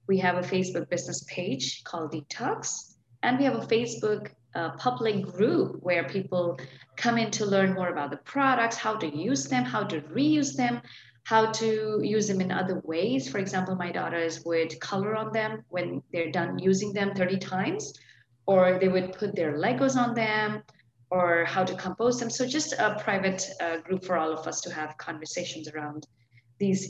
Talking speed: 185 wpm